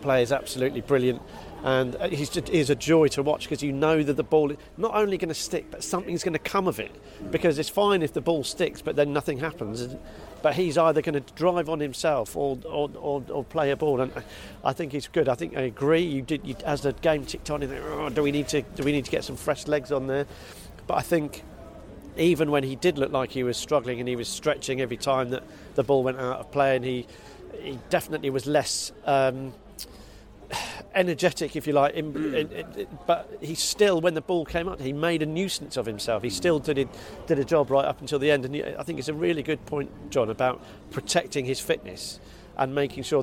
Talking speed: 230 wpm